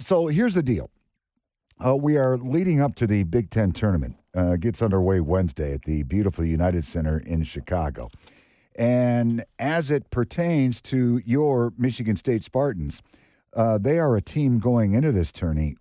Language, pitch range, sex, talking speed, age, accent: English, 95-130 Hz, male, 165 wpm, 50-69, American